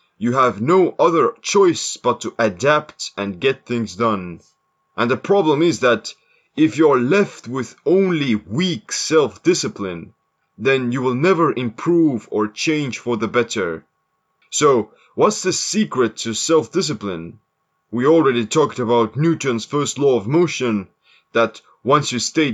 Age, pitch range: 30-49, 115-165 Hz